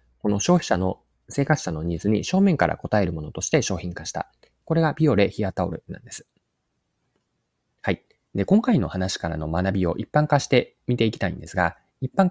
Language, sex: Japanese, male